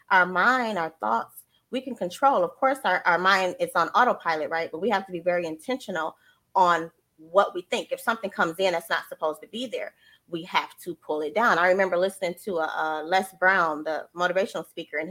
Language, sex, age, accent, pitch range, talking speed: English, female, 20-39, American, 180-255 Hz, 220 wpm